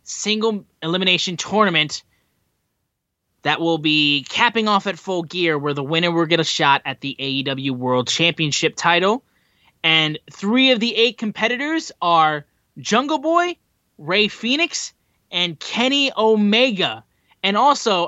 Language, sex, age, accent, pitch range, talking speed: English, male, 20-39, American, 140-205 Hz, 135 wpm